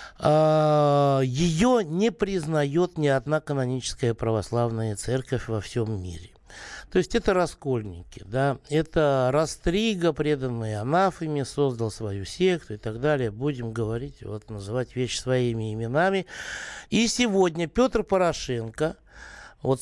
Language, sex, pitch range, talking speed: Russian, male, 120-165 Hz, 115 wpm